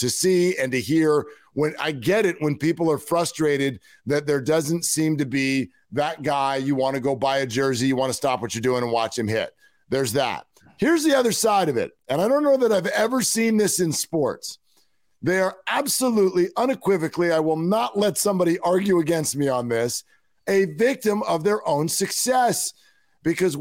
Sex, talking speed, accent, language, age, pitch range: male, 200 wpm, American, English, 50-69, 140-205 Hz